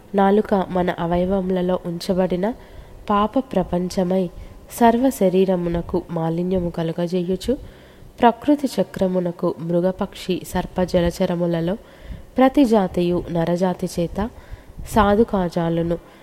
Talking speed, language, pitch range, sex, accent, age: 80 wpm, Telugu, 175-200 Hz, female, native, 20-39